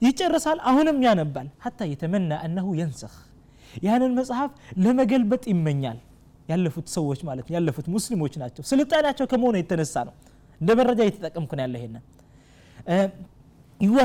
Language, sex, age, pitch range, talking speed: Amharic, male, 20-39, 165-245 Hz, 85 wpm